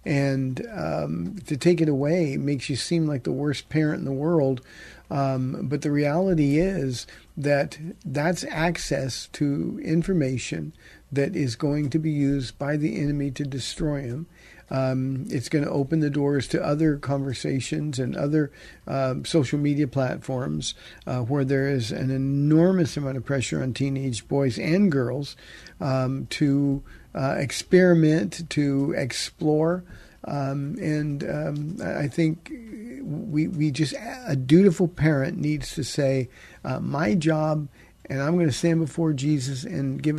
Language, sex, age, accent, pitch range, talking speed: English, male, 50-69, American, 135-160 Hz, 150 wpm